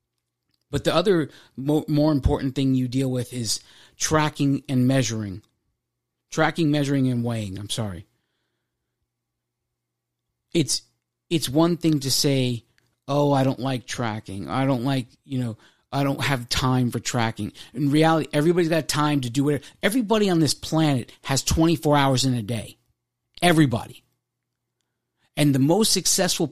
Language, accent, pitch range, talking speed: English, American, 120-155 Hz, 145 wpm